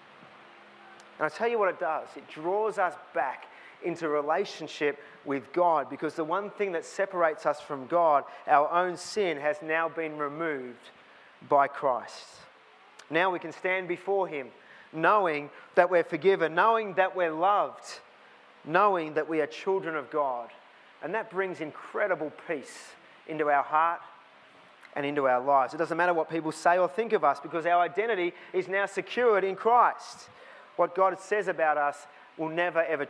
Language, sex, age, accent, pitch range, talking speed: English, male, 30-49, Australian, 145-180 Hz, 165 wpm